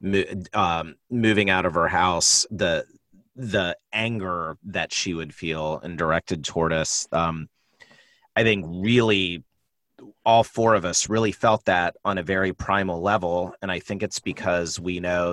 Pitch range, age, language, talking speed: 85-100 Hz, 30-49, English, 155 wpm